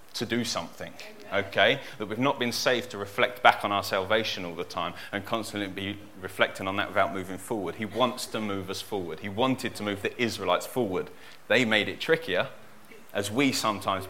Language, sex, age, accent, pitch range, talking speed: English, male, 30-49, British, 100-120 Hz, 200 wpm